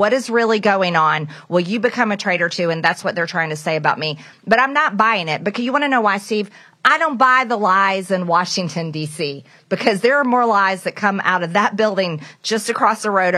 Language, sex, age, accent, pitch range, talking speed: English, female, 40-59, American, 175-240 Hz, 245 wpm